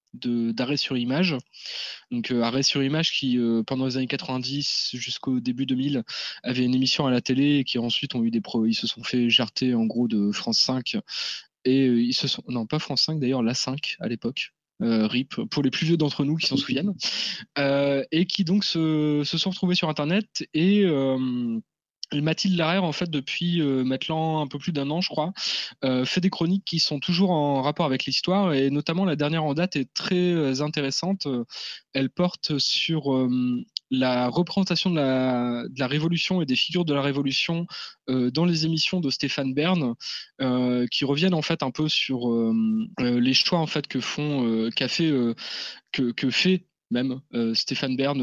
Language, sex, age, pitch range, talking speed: French, male, 20-39, 125-165 Hz, 200 wpm